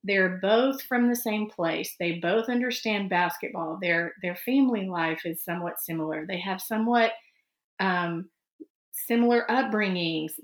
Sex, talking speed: female, 130 wpm